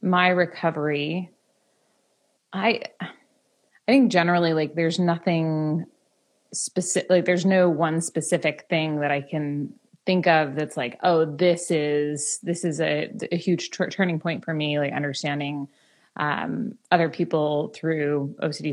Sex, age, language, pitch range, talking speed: female, 20-39, English, 155-185 Hz, 135 wpm